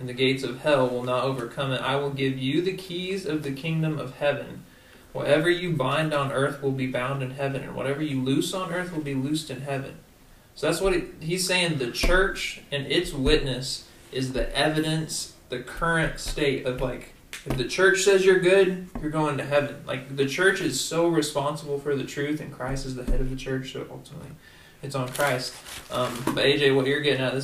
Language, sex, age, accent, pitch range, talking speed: English, male, 20-39, American, 130-150 Hz, 220 wpm